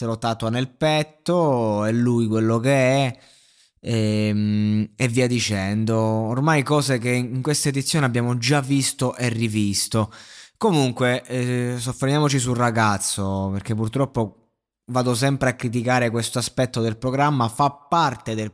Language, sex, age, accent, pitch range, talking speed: Italian, male, 20-39, native, 110-130 Hz, 135 wpm